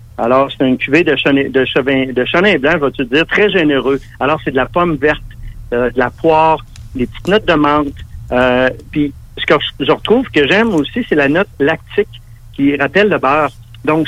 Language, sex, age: French, male, 60-79